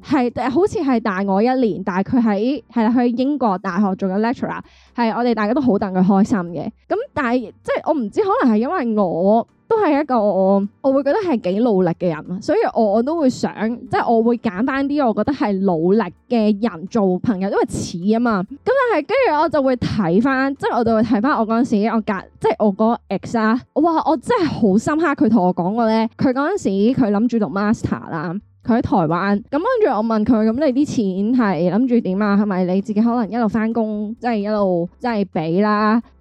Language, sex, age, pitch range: Chinese, female, 10-29, 205-265 Hz